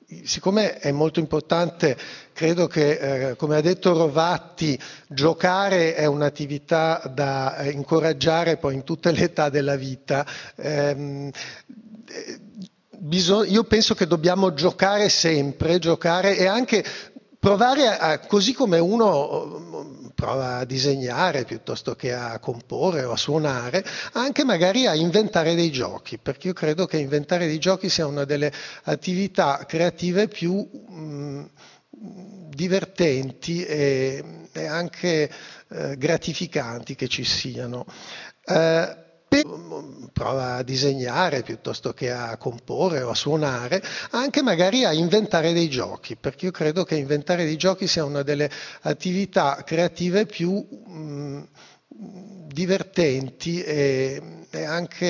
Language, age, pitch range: Italian, 50-69, 140-190 Hz